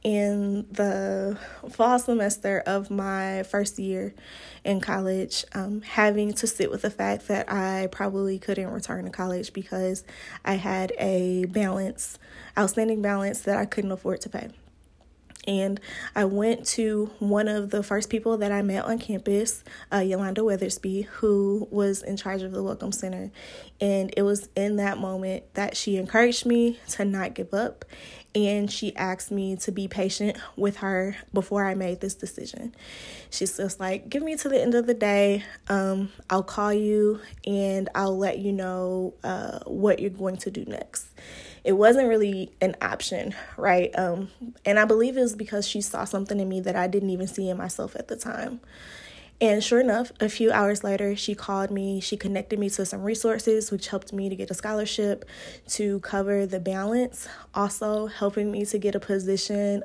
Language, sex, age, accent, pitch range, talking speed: English, female, 20-39, American, 190-210 Hz, 180 wpm